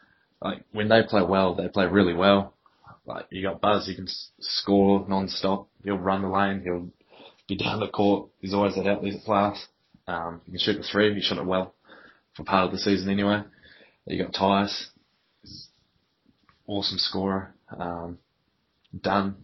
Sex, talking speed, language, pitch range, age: male, 175 wpm, English, 90-100 Hz, 20-39